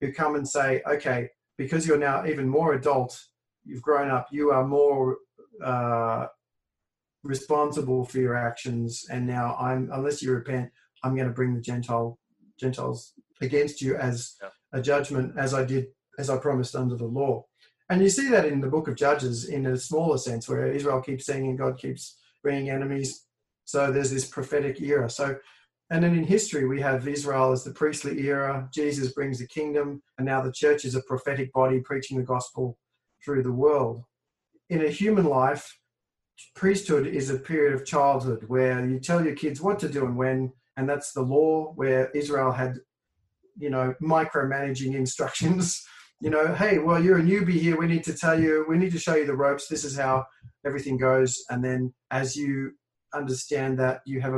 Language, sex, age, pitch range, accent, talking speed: English, male, 40-59, 130-145 Hz, Australian, 190 wpm